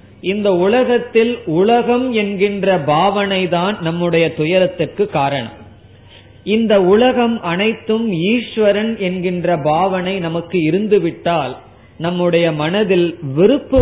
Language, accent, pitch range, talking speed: Tamil, native, 160-205 Hz, 80 wpm